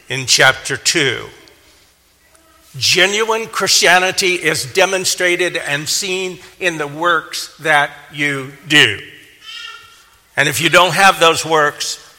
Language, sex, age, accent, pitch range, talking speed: English, male, 60-79, American, 130-185 Hz, 110 wpm